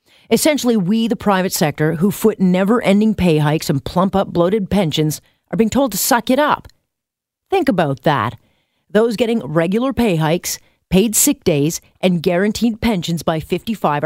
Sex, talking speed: female, 165 wpm